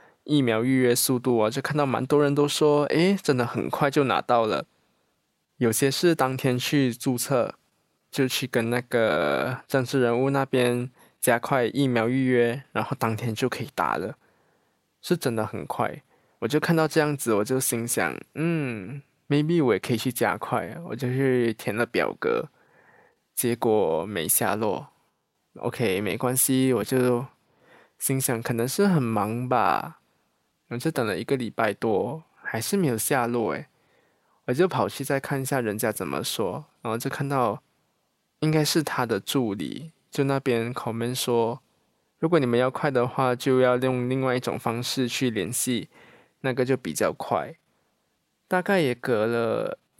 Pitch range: 120-140 Hz